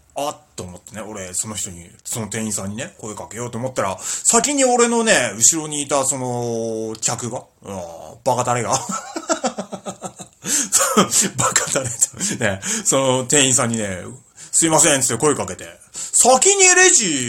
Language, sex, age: Japanese, male, 30-49